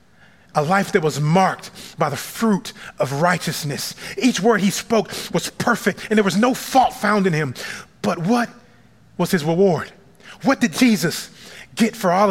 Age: 30-49